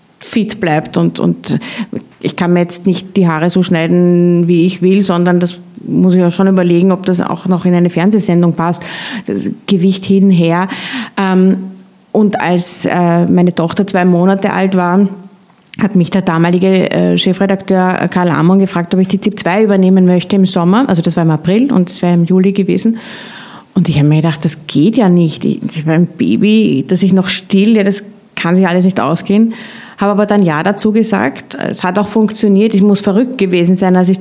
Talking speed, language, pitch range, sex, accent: 195 wpm, German, 175-205 Hz, female, Austrian